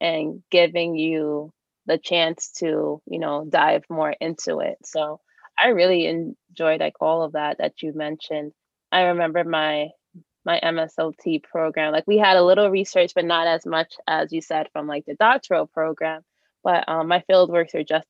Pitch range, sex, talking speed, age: 160-180 Hz, female, 180 wpm, 20-39